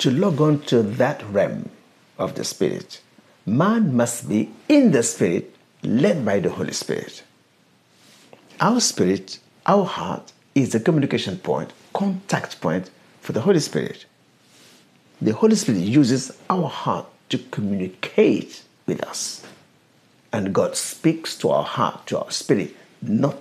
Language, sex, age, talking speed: English, male, 60-79, 140 wpm